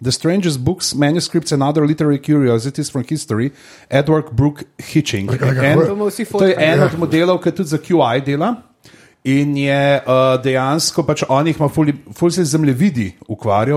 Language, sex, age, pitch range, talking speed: English, male, 40-59, 135-155 Hz, 145 wpm